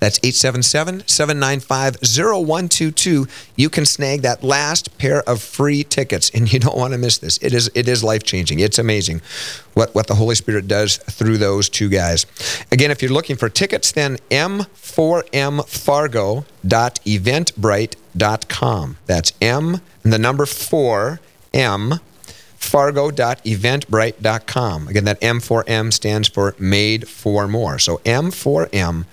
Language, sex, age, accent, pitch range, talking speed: English, male, 40-59, American, 110-145 Hz, 130 wpm